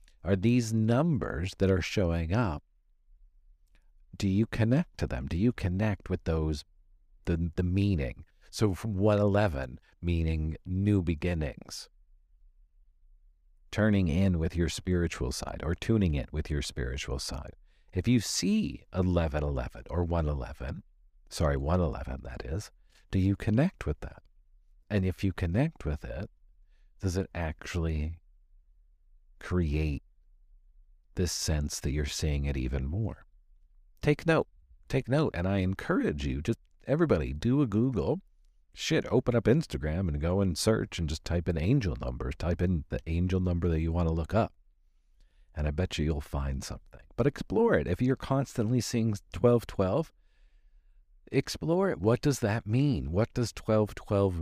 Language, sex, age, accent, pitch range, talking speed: English, male, 50-69, American, 75-105 Hz, 150 wpm